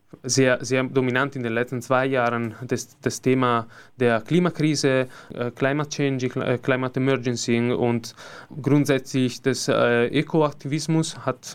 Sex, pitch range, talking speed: male, 120-145 Hz, 130 wpm